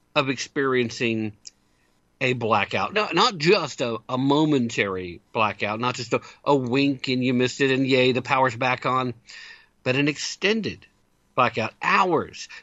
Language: English